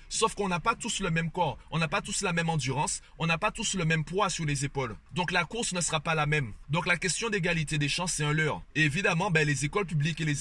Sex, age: male, 30-49